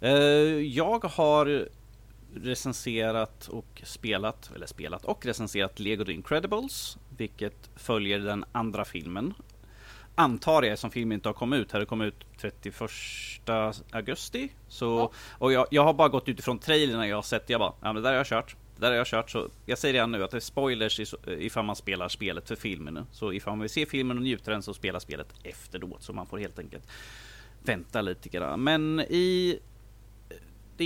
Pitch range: 105-120 Hz